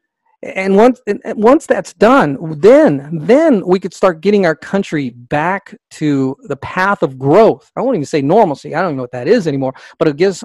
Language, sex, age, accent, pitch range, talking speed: English, male, 40-59, American, 155-225 Hz, 205 wpm